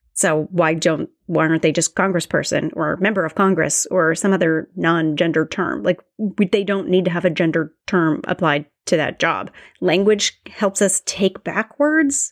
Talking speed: 175 wpm